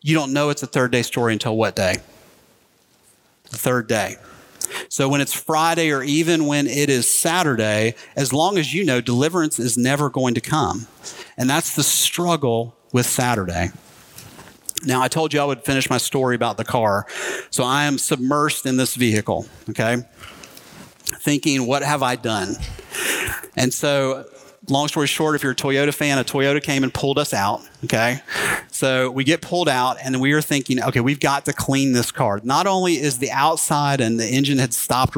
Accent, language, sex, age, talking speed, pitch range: American, English, male, 40-59, 190 wpm, 120-150 Hz